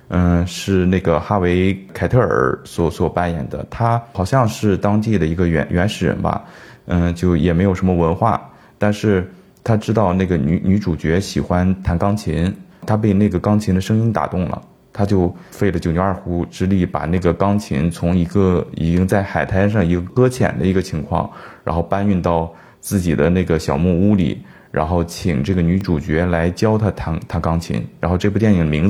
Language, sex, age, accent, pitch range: Chinese, male, 20-39, native, 85-100 Hz